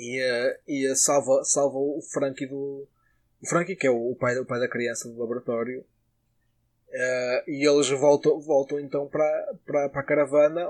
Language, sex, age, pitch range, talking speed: Portuguese, male, 20-39, 130-155 Hz, 145 wpm